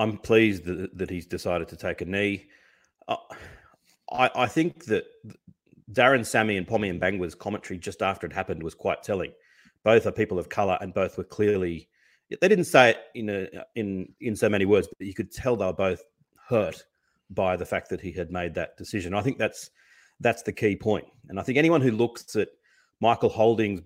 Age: 30-49